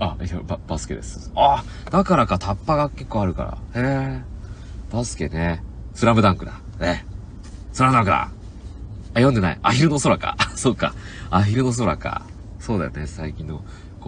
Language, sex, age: Japanese, male, 30-49